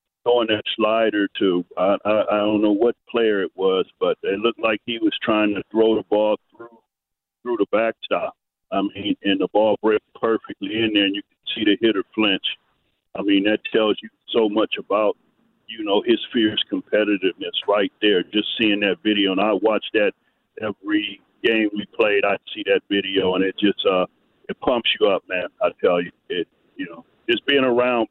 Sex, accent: male, American